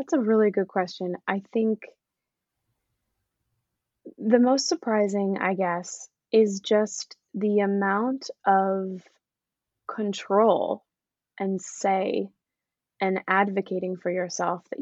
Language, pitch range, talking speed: English, 185-225 Hz, 100 wpm